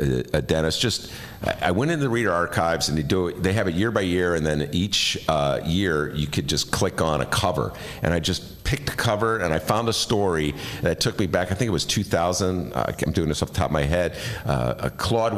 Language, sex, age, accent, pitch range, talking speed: English, male, 50-69, American, 80-110 Hz, 250 wpm